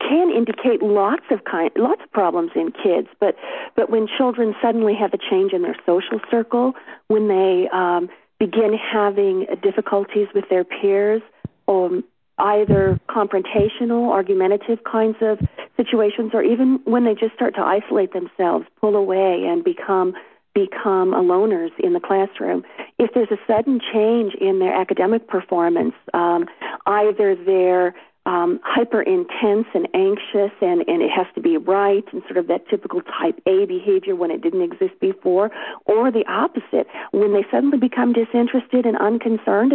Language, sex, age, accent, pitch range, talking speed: English, female, 40-59, American, 190-255 Hz, 160 wpm